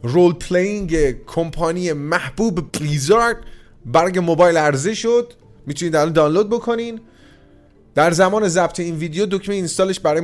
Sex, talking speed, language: male, 110 wpm, Persian